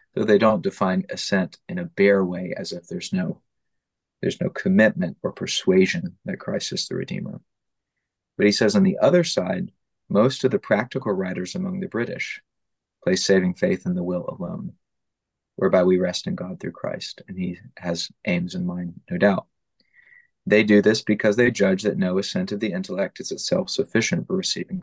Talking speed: 190 wpm